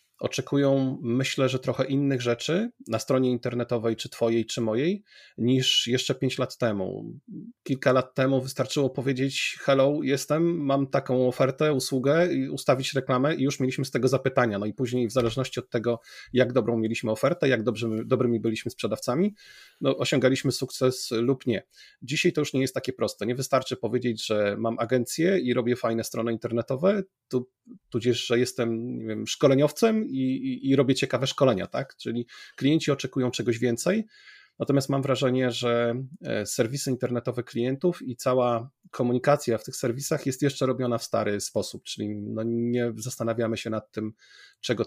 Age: 30-49